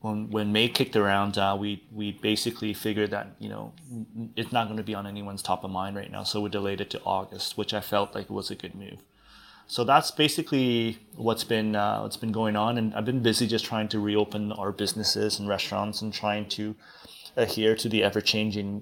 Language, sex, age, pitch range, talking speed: English, male, 20-39, 100-110 Hz, 215 wpm